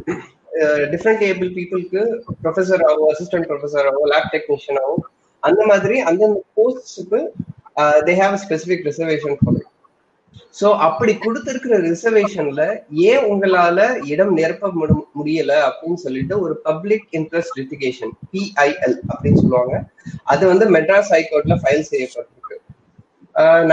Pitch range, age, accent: 155-200 Hz, 20-39, native